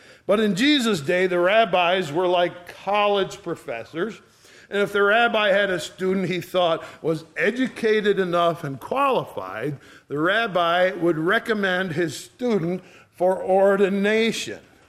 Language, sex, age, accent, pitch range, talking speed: English, male, 50-69, American, 155-200 Hz, 130 wpm